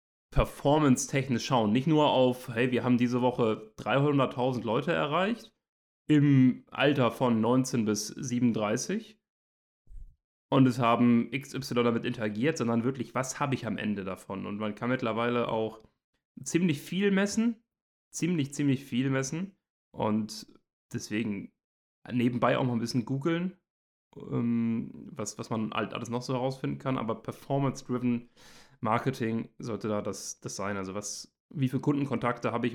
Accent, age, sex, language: German, 30-49, male, German